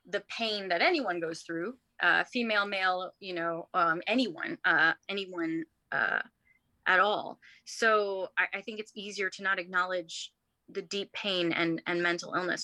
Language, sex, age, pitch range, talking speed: English, female, 20-39, 175-200 Hz, 150 wpm